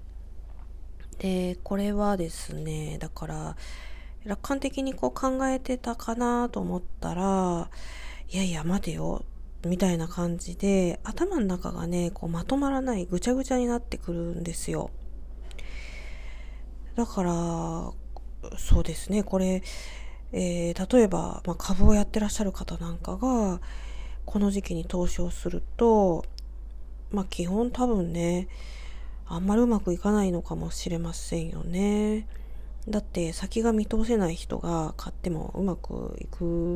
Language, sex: Japanese, female